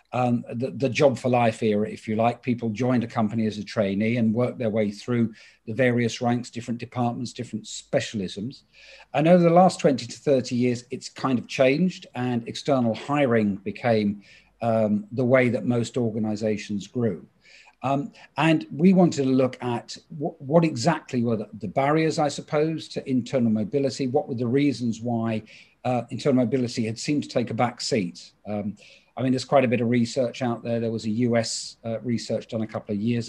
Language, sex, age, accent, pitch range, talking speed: English, male, 50-69, British, 115-135 Hz, 195 wpm